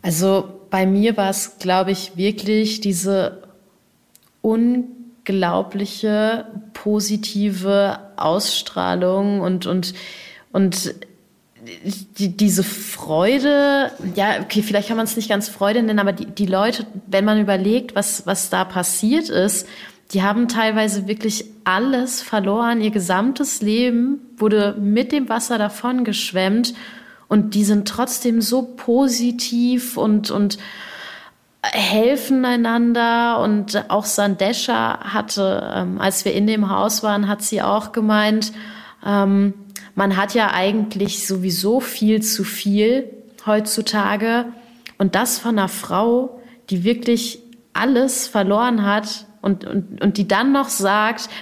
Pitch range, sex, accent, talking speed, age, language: 200-230 Hz, female, German, 120 wpm, 30-49, German